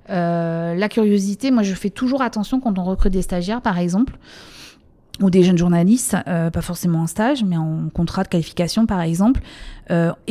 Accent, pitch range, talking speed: French, 175-220 Hz, 185 wpm